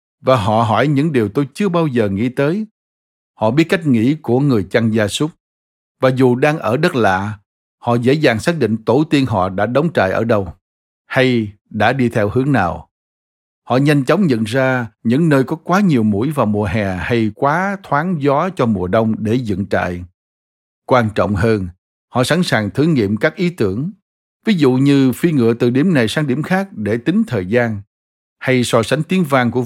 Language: Vietnamese